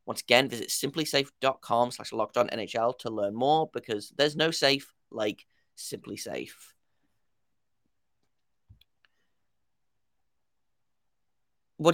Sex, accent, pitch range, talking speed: male, British, 115-150 Hz, 90 wpm